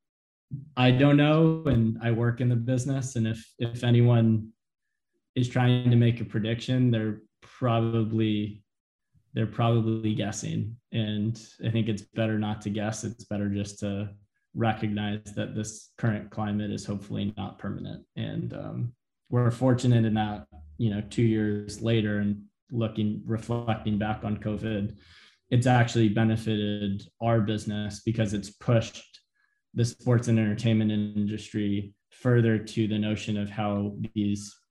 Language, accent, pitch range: English, American, 105-115 Hz